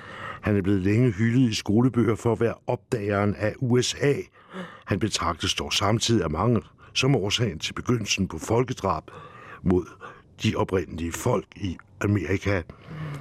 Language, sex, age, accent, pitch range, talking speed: English, male, 60-79, Danish, 95-125 Hz, 140 wpm